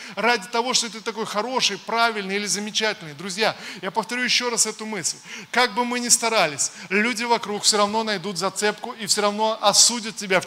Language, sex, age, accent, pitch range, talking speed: Russian, male, 20-39, native, 195-235 Hz, 190 wpm